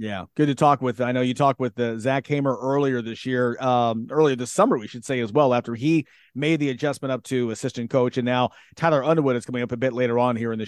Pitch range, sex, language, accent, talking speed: 125-165 Hz, male, English, American, 270 wpm